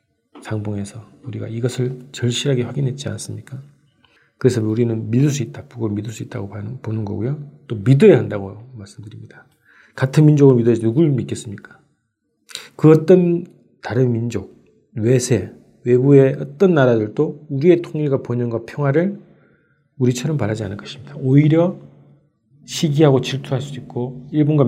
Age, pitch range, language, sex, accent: 40-59, 115-145 Hz, Korean, male, native